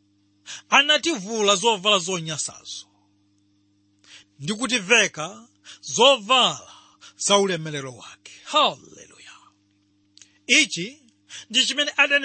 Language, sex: English, male